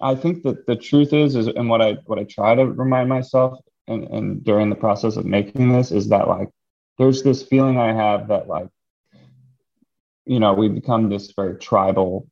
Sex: male